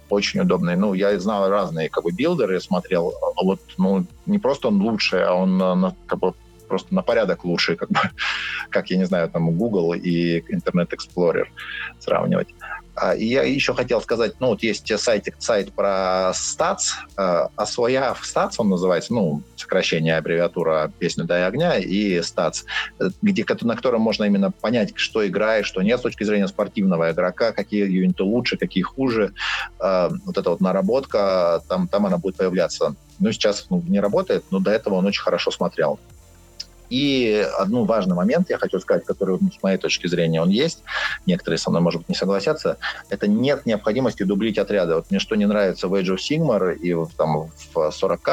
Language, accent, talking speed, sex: Russian, native, 180 wpm, male